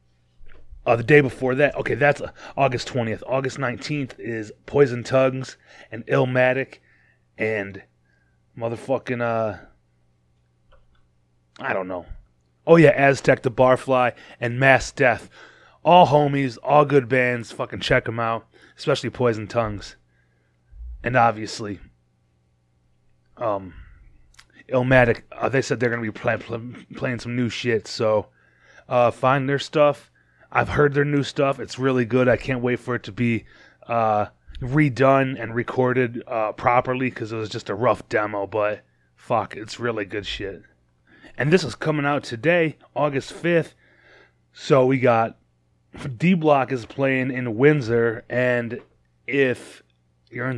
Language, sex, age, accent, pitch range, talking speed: English, male, 30-49, American, 100-130 Hz, 140 wpm